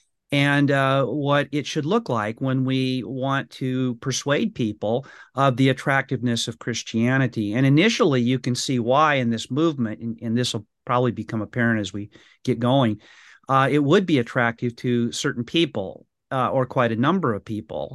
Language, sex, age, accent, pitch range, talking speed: English, male, 40-59, American, 115-135 Hz, 175 wpm